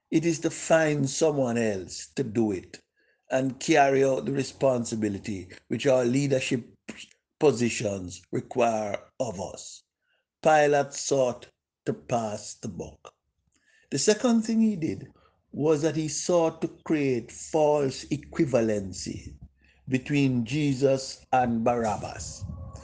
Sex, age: male, 60-79